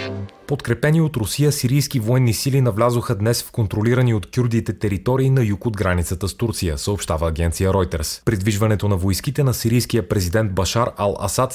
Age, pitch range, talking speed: 30-49, 100-130 Hz, 155 wpm